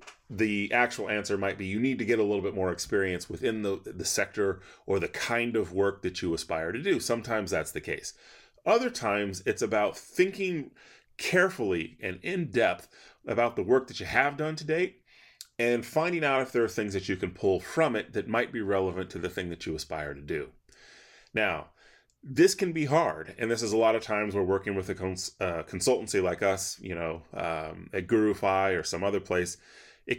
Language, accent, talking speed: English, American, 205 wpm